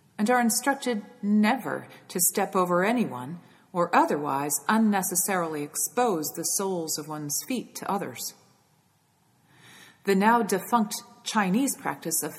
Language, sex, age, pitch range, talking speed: English, female, 40-59, 170-235 Hz, 120 wpm